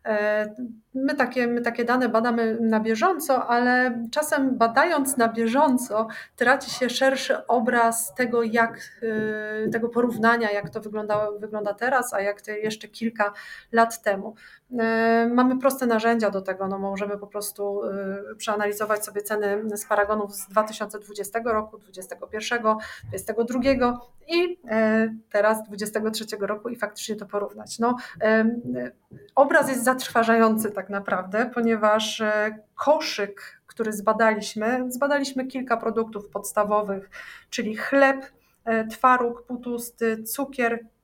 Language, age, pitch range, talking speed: Polish, 30-49, 215-245 Hz, 115 wpm